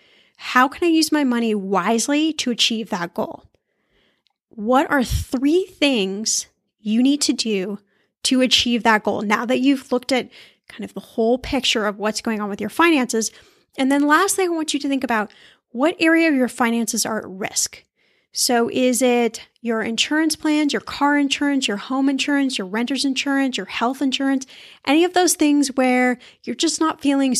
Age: 10-29